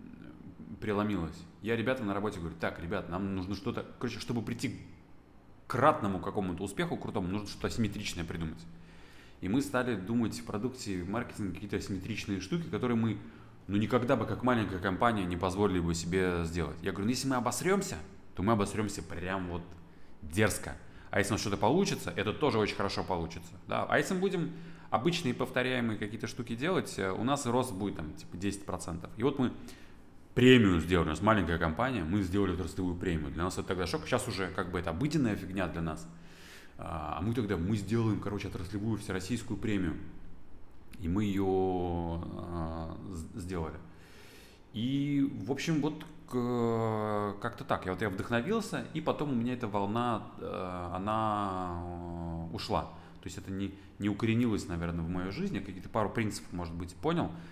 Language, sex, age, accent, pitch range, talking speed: Russian, male, 20-39, native, 90-115 Hz, 165 wpm